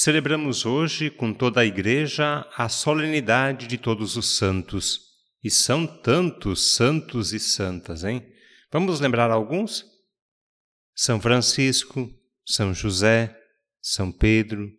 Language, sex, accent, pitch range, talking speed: Portuguese, male, Brazilian, 110-150 Hz, 115 wpm